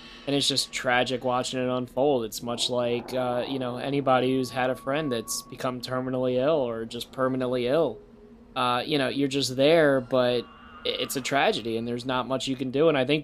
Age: 20-39